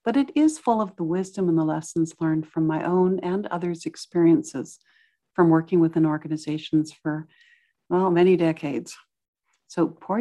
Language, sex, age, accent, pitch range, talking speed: English, female, 60-79, American, 165-250 Hz, 160 wpm